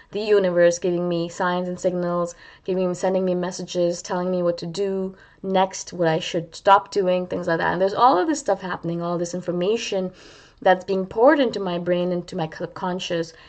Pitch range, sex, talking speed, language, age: 170-200 Hz, female, 195 wpm, English, 20-39